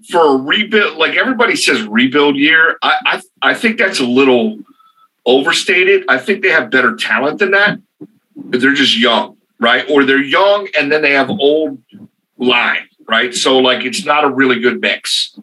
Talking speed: 185 wpm